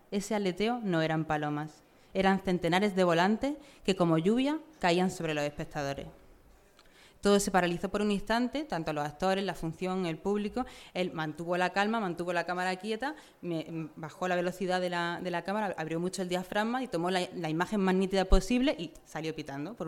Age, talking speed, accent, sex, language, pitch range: 20-39, 185 wpm, Spanish, female, Spanish, 165-200 Hz